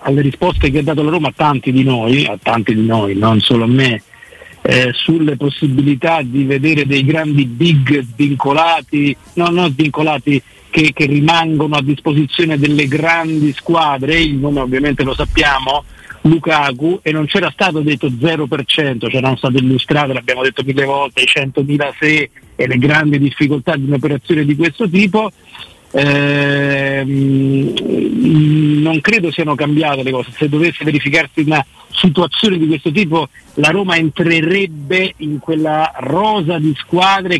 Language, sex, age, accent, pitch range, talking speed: Italian, male, 50-69, native, 140-165 Hz, 150 wpm